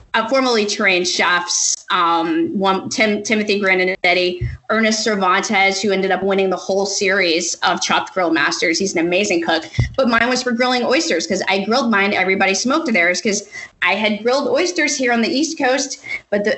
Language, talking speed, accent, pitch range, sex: English, 185 wpm, American, 195-265 Hz, female